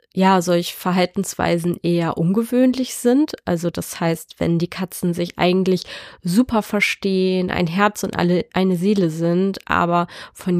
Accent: German